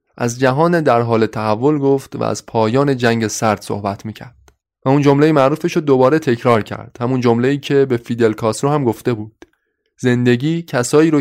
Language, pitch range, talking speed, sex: Persian, 115-145 Hz, 180 wpm, male